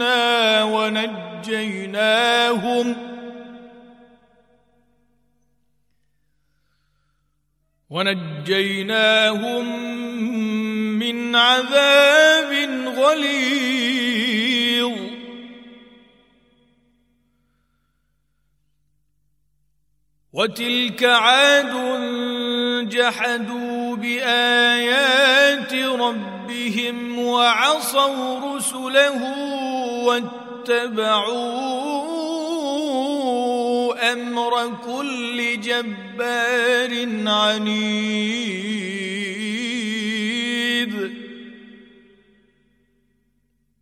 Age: 50-69